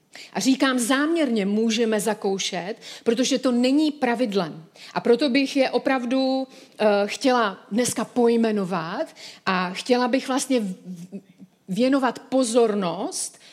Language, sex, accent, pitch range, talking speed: Czech, female, native, 210-265 Hz, 100 wpm